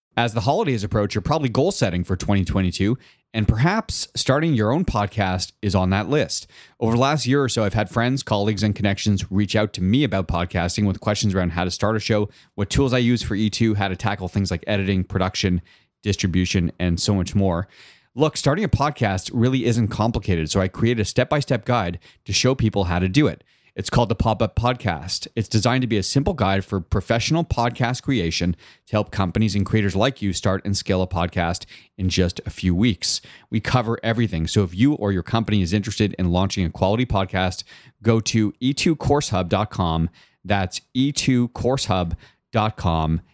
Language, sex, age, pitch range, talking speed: English, male, 30-49, 95-120 Hz, 190 wpm